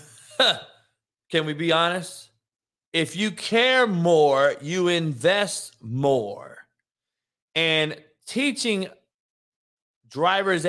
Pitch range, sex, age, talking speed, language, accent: 115-175 Hz, male, 30-49, 80 wpm, English, American